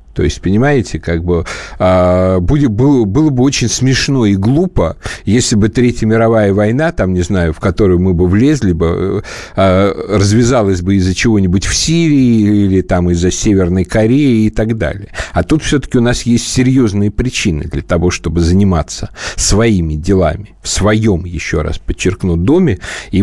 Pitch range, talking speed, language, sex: 90-115 Hz, 140 wpm, Russian, male